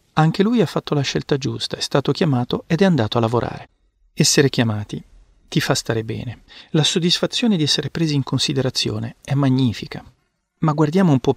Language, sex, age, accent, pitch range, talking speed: Italian, male, 40-59, native, 120-155 Hz, 180 wpm